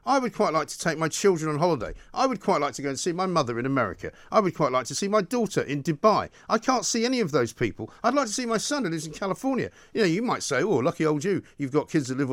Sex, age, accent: male, 50-69, British